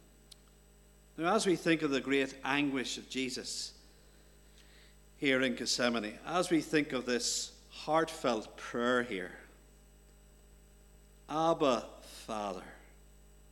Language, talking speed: English, 100 wpm